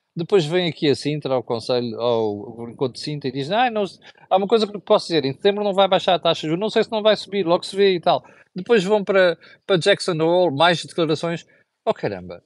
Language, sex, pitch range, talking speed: Portuguese, male, 145-215 Hz, 250 wpm